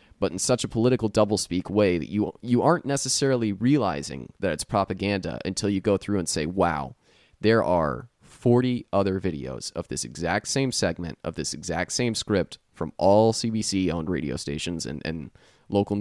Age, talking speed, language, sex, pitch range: 30-49, 170 wpm, English, male, 85-115 Hz